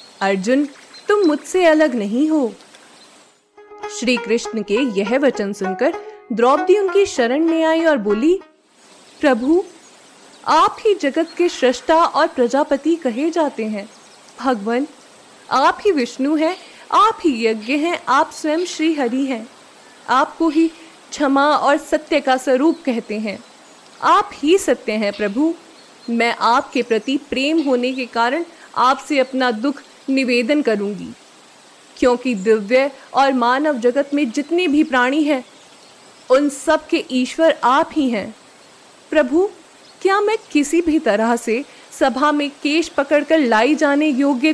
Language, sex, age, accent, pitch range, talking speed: Hindi, female, 20-39, native, 250-320 Hz, 120 wpm